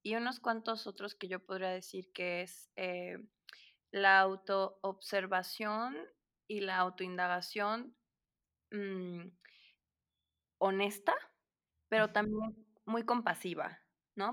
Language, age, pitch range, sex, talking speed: Spanish, 20-39, 185-215 Hz, female, 95 wpm